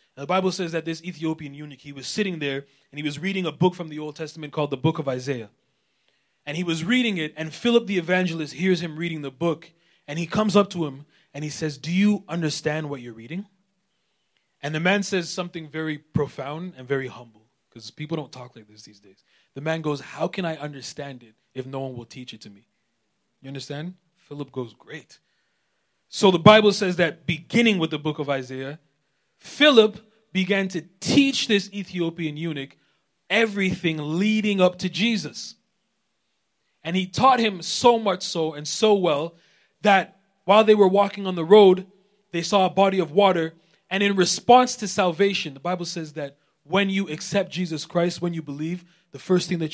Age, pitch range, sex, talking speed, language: 20-39, 145-195 Hz, male, 195 wpm, English